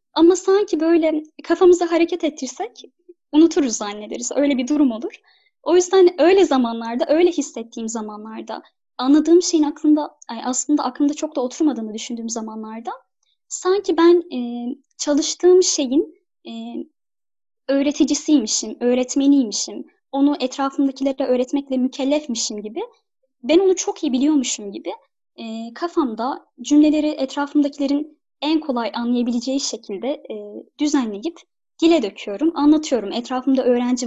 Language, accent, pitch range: Turkish, native, 250-320 Hz